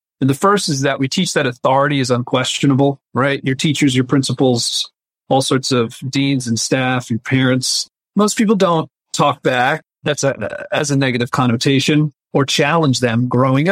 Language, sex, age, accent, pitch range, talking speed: English, male, 40-59, American, 125-155 Hz, 165 wpm